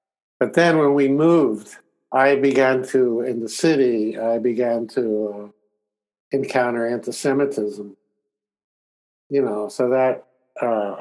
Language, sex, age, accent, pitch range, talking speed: English, male, 60-79, American, 115-135 Hz, 120 wpm